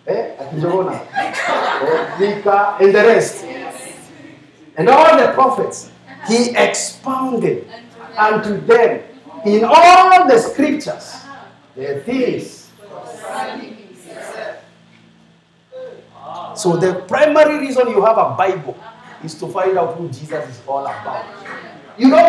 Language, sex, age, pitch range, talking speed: English, male, 50-69, 200-260 Hz, 100 wpm